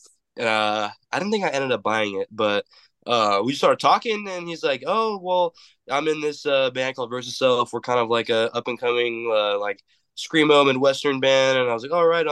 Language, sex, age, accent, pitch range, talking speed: English, male, 20-39, American, 100-135 Hz, 220 wpm